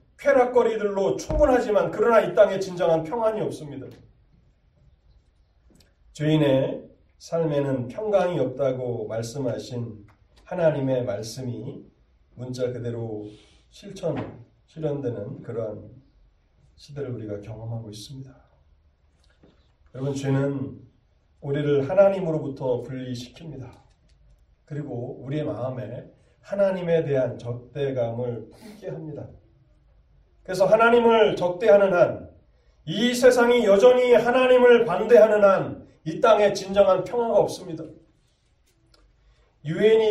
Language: Korean